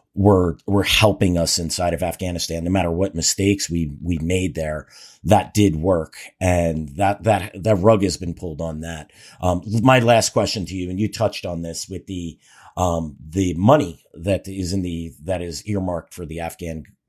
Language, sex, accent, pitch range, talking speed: English, male, American, 80-100 Hz, 190 wpm